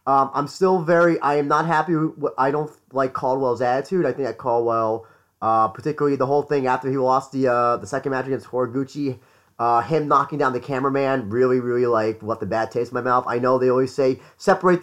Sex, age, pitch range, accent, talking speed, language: male, 30-49, 125-155 Hz, American, 220 wpm, English